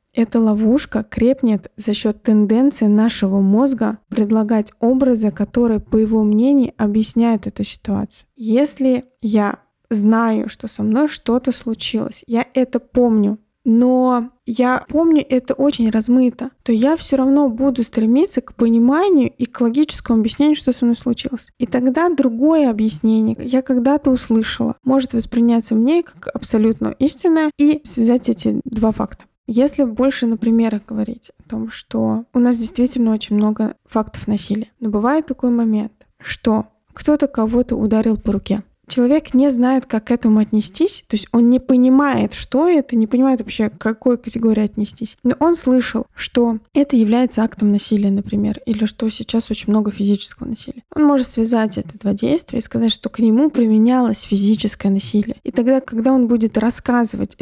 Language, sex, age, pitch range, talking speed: Russian, female, 20-39, 220-255 Hz, 155 wpm